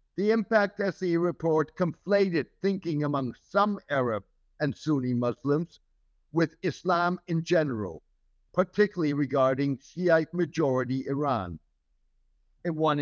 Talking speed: 100 wpm